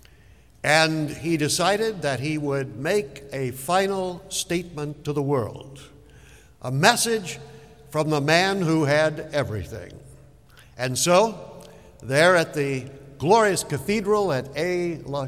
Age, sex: 60-79, male